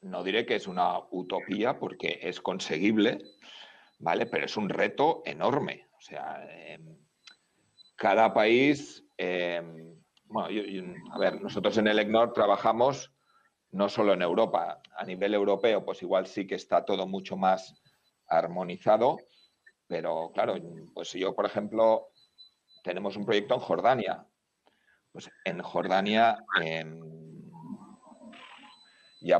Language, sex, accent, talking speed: Spanish, male, Spanish, 130 wpm